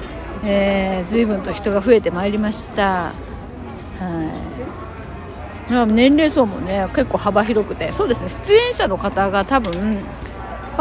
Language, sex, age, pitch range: Japanese, female, 40-59, 200-275 Hz